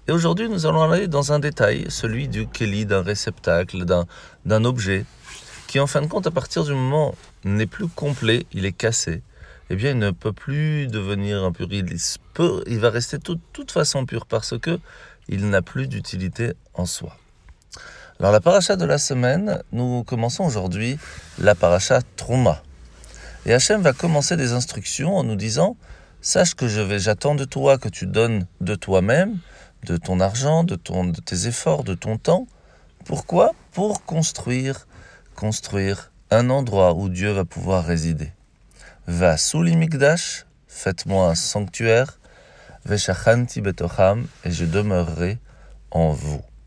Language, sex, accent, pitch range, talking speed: French, male, French, 95-135 Hz, 160 wpm